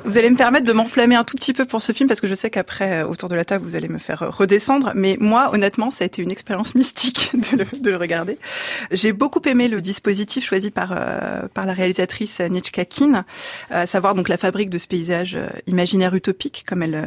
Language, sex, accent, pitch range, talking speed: French, female, French, 185-245 Hz, 225 wpm